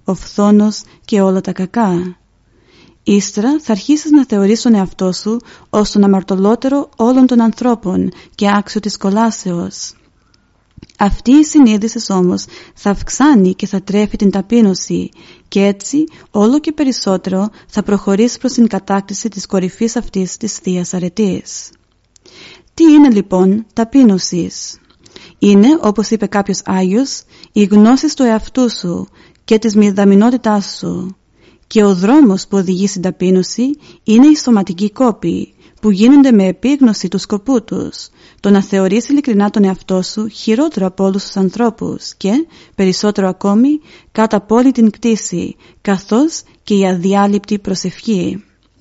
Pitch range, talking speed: 190-230 Hz, 135 wpm